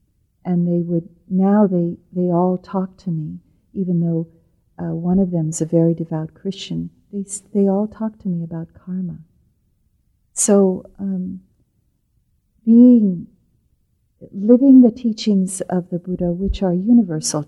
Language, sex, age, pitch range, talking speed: English, female, 50-69, 160-185 Hz, 140 wpm